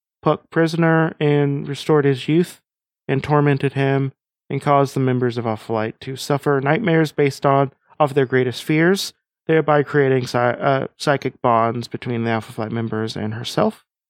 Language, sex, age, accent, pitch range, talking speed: English, male, 30-49, American, 125-150 Hz, 160 wpm